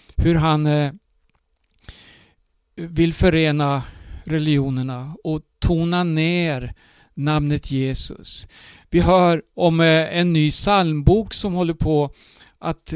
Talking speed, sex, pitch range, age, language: 95 wpm, male, 140-175 Hz, 60-79, Swedish